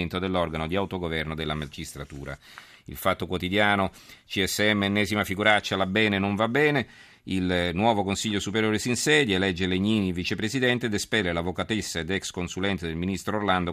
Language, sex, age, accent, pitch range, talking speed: Italian, male, 40-59, native, 85-105 Hz, 150 wpm